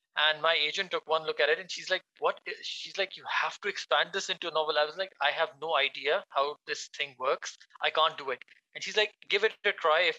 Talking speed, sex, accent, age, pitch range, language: 270 wpm, male, Indian, 20-39, 145-195 Hz, English